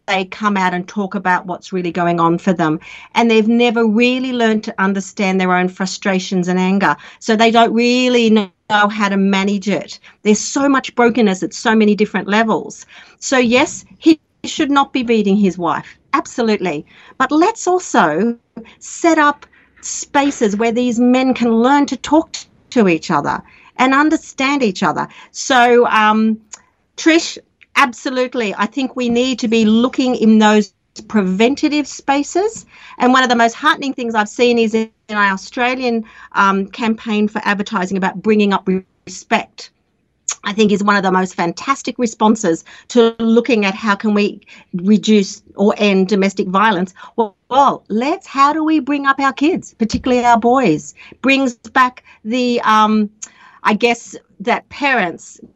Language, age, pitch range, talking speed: English, 50-69, 200-255 Hz, 160 wpm